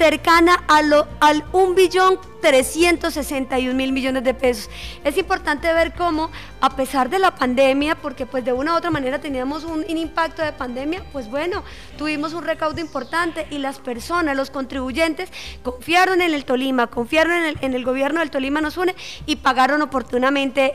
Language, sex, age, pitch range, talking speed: Spanish, female, 30-49, 275-335 Hz, 175 wpm